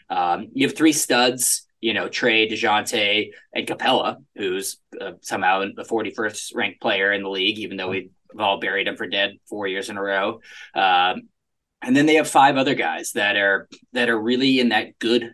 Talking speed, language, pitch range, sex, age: 200 wpm, English, 100-135 Hz, male, 20-39